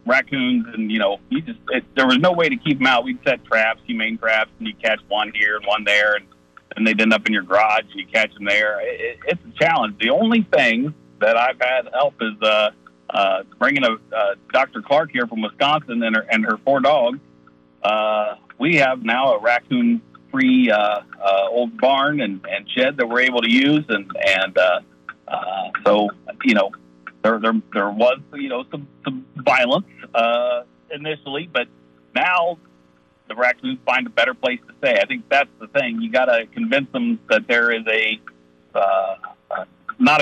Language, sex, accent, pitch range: English, male, American, 100-150 Hz